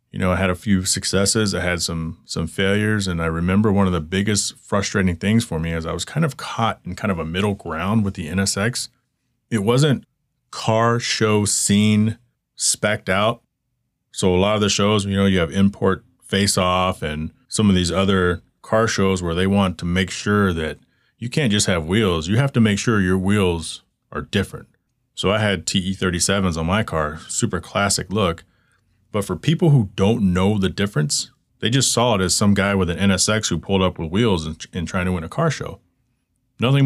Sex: male